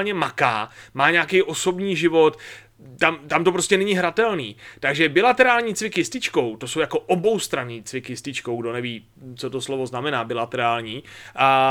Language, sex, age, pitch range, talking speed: Czech, male, 30-49, 145-200 Hz, 160 wpm